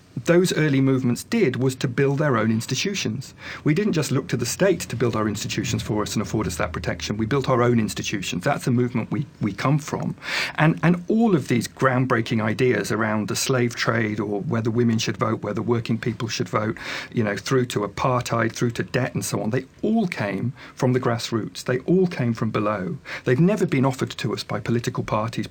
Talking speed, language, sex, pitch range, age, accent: 215 wpm, English, male, 110-135 Hz, 40-59, British